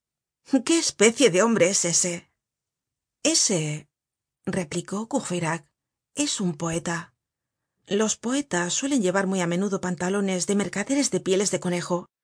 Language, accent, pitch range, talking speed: Spanish, Spanish, 175-215 Hz, 125 wpm